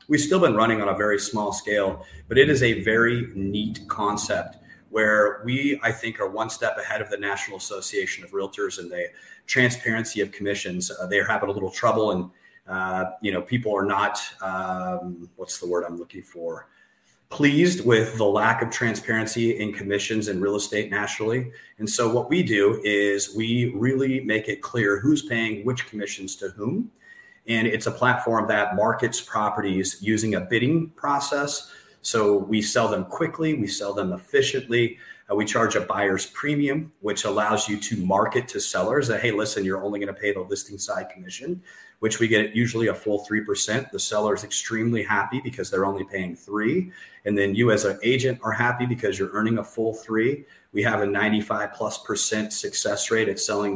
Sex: male